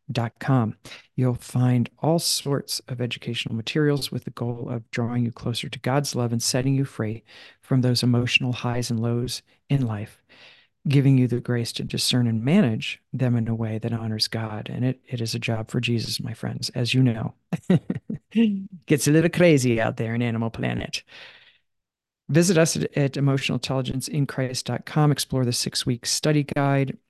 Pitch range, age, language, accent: 115-135 Hz, 50-69, English, American